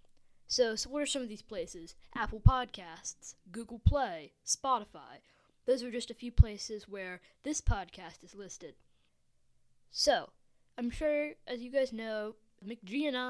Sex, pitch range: female, 215-265 Hz